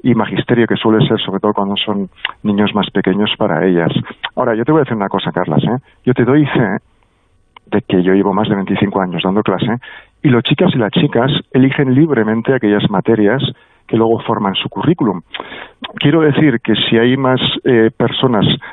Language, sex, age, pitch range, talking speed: Spanish, male, 50-69, 105-135 Hz, 190 wpm